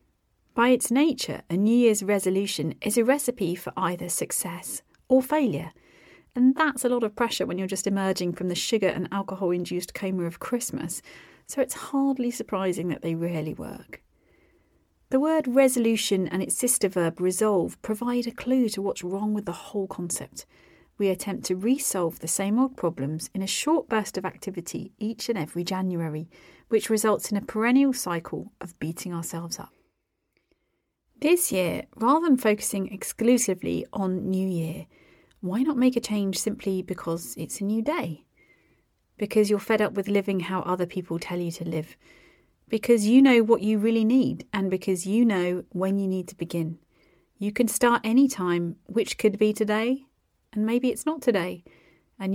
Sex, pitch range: female, 180-235 Hz